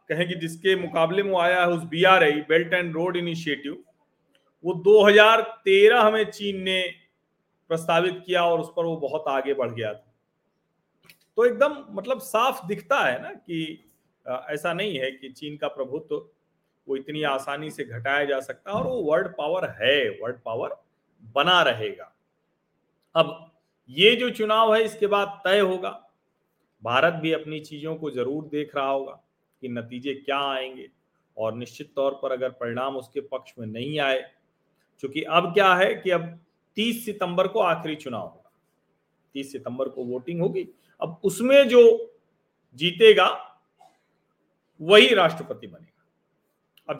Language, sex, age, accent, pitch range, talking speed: Hindi, male, 40-59, native, 140-195 Hz, 155 wpm